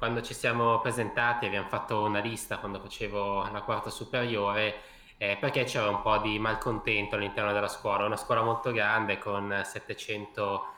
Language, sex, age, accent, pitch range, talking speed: Italian, male, 20-39, native, 105-115 Hz, 160 wpm